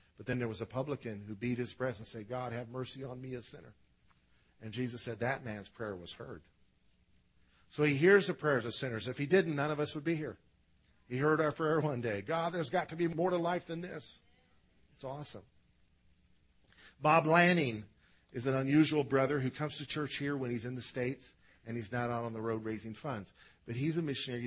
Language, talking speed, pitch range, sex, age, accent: English, 220 wpm, 110-145 Hz, male, 50-69, American